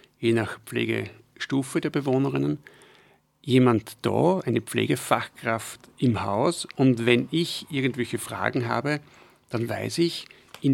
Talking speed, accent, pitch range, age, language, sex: 115 wpm, German, 115-140 Hz, 50-69, German, male